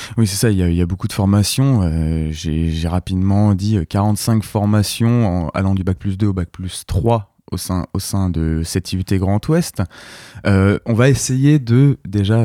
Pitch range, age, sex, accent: 95-130 Hz, 20-39, male, French